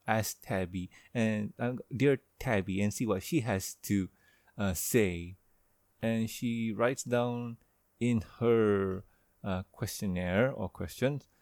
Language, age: English, 30-49